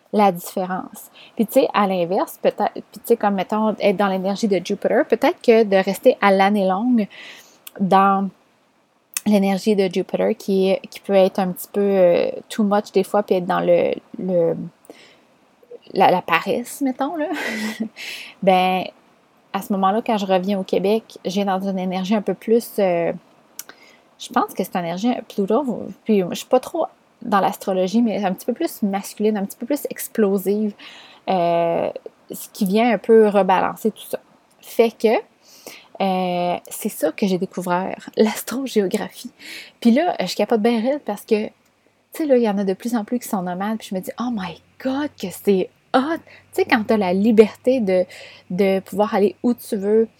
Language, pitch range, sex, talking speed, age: French, 195-235 Hz, female, 185 wpm, 20-39